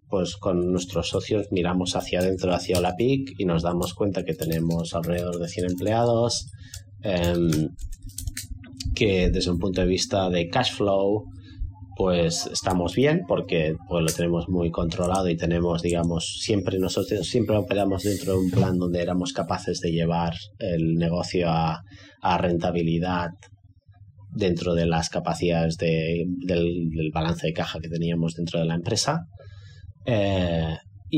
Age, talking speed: 30-49, 145 wpm